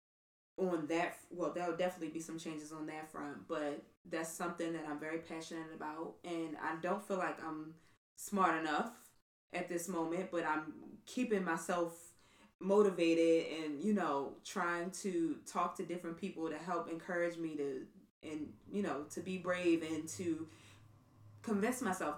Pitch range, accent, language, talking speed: 155-185 Hz, American, English, 160 wpm